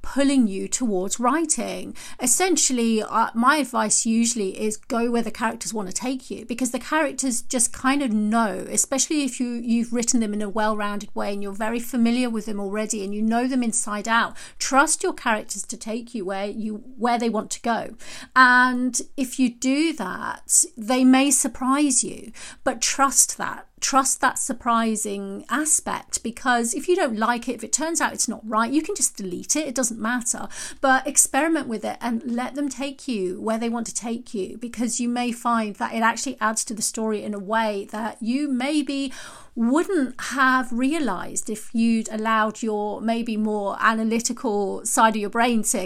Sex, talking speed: female, 190 wpm